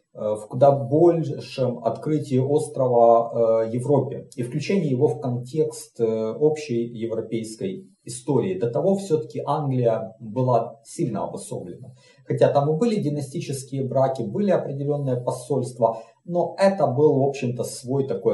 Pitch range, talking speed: 110-150 Hz, 120 wpm